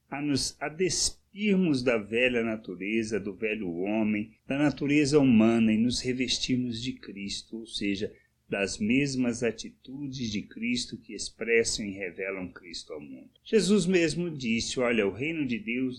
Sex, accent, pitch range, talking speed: male, Brazilian, 105-150 Hz, 145 wpm